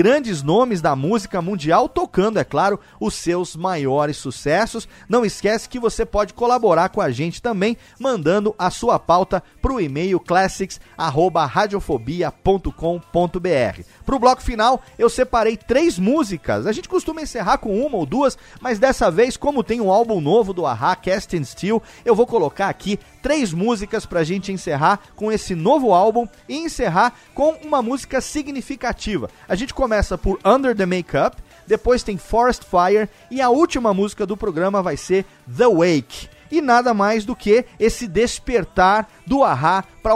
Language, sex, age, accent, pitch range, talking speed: Portuguese, male, 40-59, Brazilian, 185-245 Hz, 165 wpm